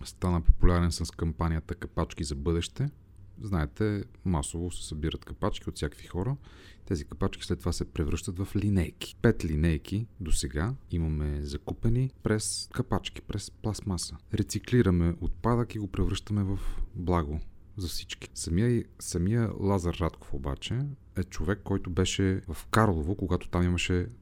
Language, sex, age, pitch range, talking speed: Bulgarian, male, 30-49, 85-100 Hz, 140 wpm